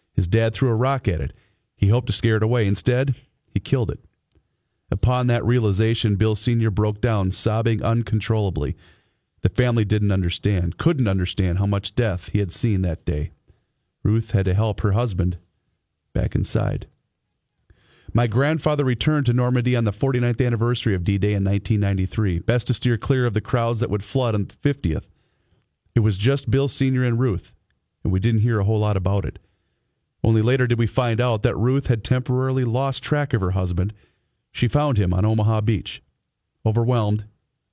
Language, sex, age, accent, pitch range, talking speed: English, male, 40-59, American, 100-120 Hz, 180 wpm